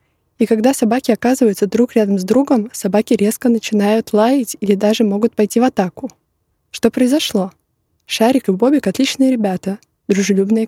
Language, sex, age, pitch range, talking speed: Russian, female, 20-39, 195-230 Hz, 145 wpm